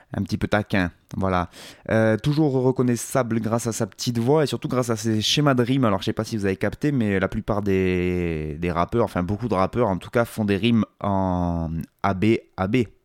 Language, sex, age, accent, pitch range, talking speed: French, male, 20-39, French, 95-115 Hz, 220 wpm